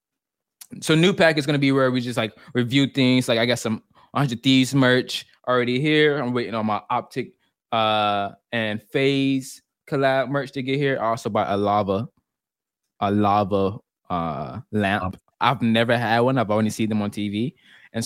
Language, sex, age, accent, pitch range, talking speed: English, male, 20-39, American, 105-135 Hz, 180 wpm